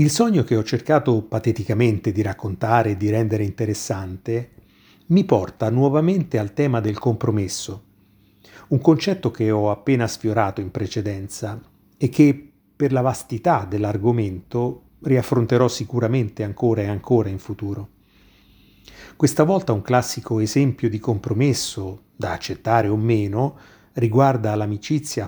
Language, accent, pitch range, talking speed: Italian, native, 105-125 Hz, 125 wpm